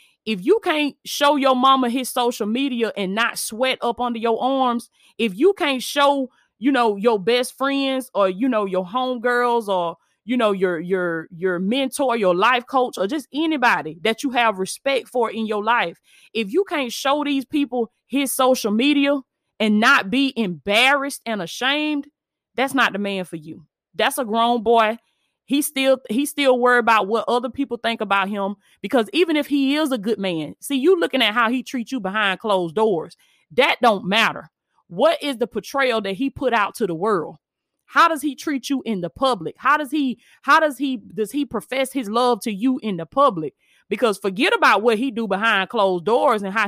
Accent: American